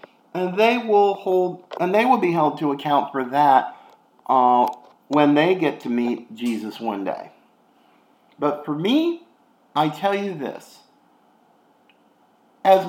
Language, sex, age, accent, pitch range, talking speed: English, male, 50-69, American, 145-205 Hz, 140 wpm